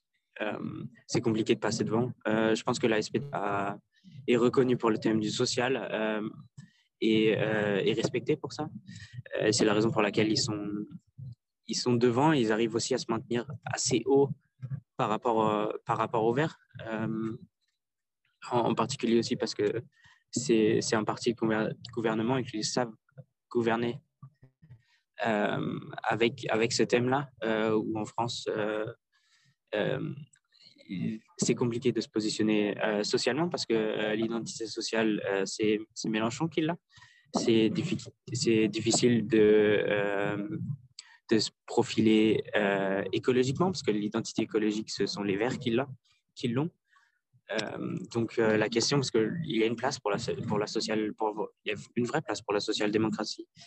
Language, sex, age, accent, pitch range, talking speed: English, male, 20-39, French, 110-125 Hz, 165 wpm